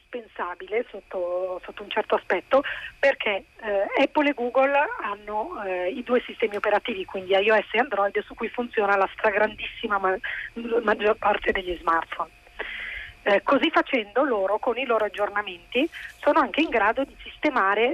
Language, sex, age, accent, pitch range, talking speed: Italian, female, 30-49, native, 200-260 Hz, 150 wpm